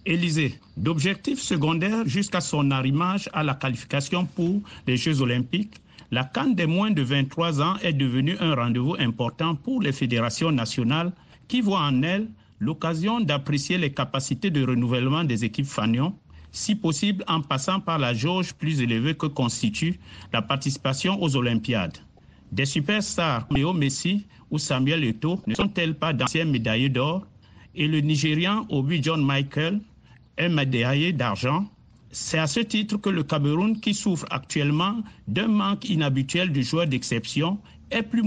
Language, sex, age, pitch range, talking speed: French, male, 60-79, 130-175 Hz, 150 wpm